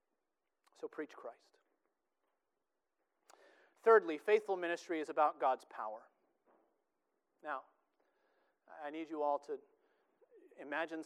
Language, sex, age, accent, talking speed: English, male, 40-59, American, 90 wpm